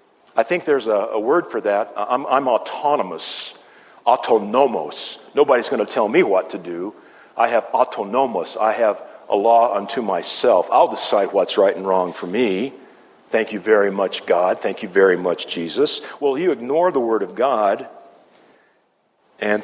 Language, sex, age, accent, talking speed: English, male, 50-69, American, 170 wpm